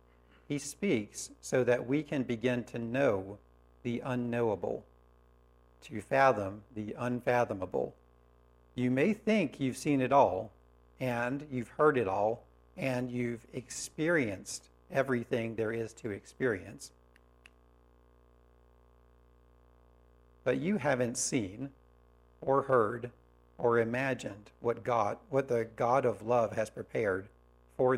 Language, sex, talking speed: English, male, 115 wpm